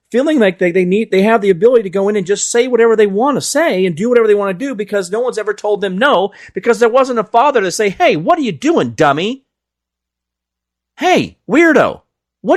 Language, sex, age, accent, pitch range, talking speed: English, male, 40-59, American, 155-255 Hz, 240 wpm